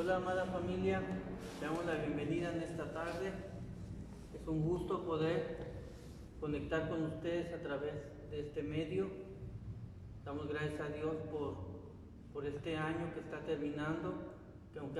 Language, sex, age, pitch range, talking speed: Spanish, male, 40-59, 145-165 Hz, 140 wpm